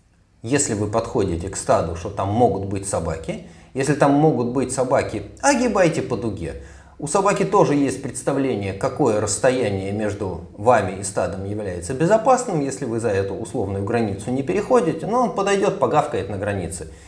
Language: Russian